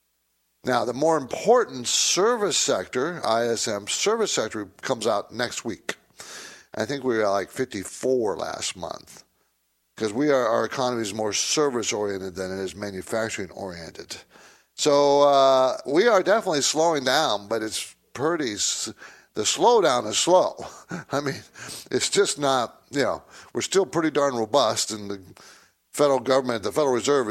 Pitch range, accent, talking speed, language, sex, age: 105-180 Hz, American, 150 wpm, English, male, 60-79